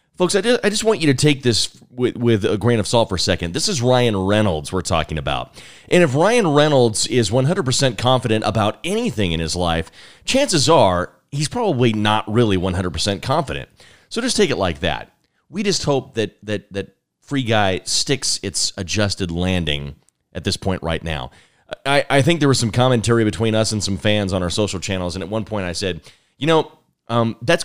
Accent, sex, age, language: American, male, 30-49, English